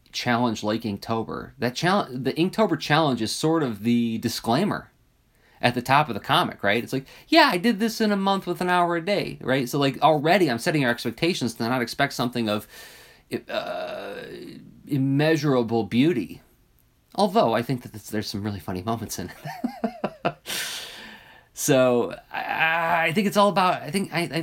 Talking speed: 170 wpm